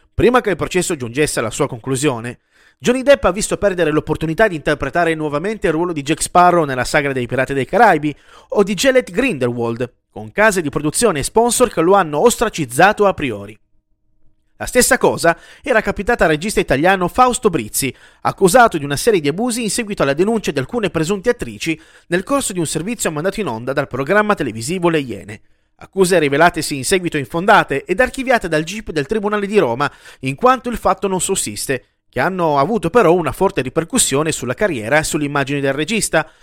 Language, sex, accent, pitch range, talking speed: Italian, male, native, 145-210 Hz, 185 wpm